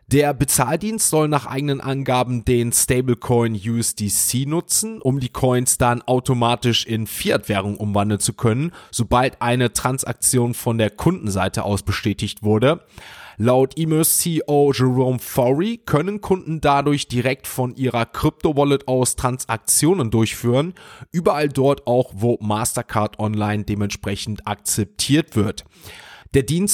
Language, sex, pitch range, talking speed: German, male, 115-145 Hz, 120 wpm